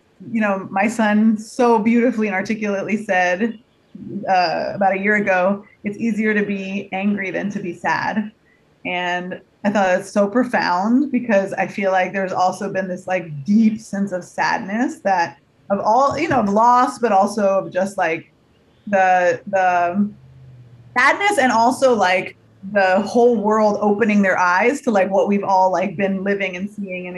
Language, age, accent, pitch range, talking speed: English, 20-39, American, 190-225 Hz, 170 wpm